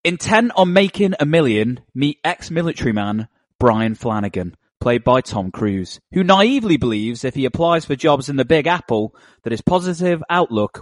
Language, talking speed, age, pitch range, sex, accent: English, 165 wpm, 30-49, 125-180 Hz, male, British